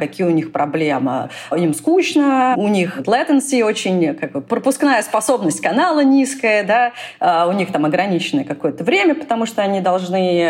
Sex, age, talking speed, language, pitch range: female, 30-49, 135 wpm, Russian, 170-255 Hz